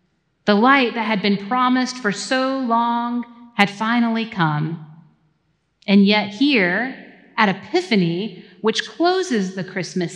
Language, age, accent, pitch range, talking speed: English, 40-59, American, 195-255 Hz, 125 wpm